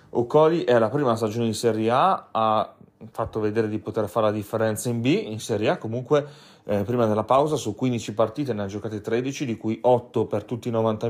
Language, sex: Italian, male